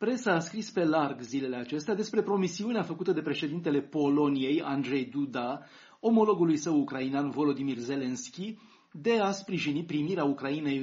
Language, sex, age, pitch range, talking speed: Romanian, male, 30-49, 135-185 Hz, 140 wpm